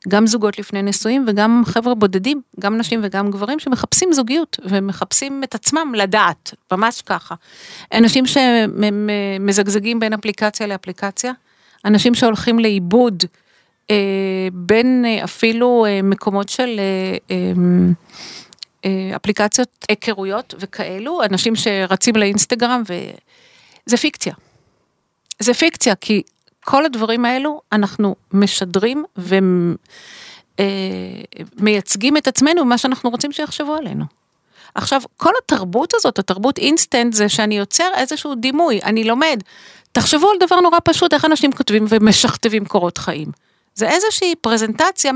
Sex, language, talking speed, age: female, Hebrew, 115 wpm, 50-69